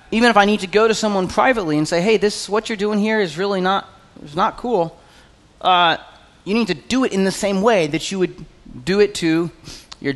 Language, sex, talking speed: English, male, 235 wpm